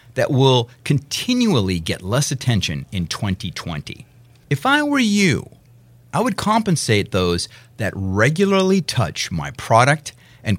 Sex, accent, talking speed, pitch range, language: male, American, 125 wpm, 115-150 Hz, English